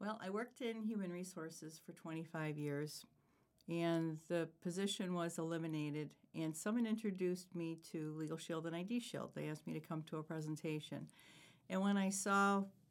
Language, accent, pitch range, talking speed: English, American, 155-190 Hz, 165 wpm